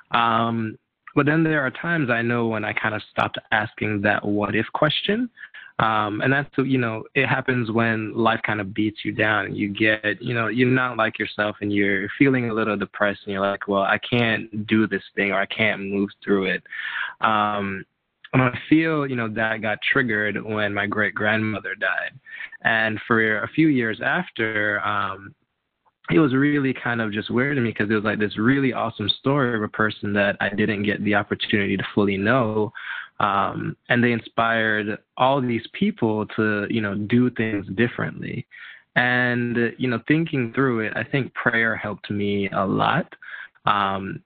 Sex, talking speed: male, 185 wpm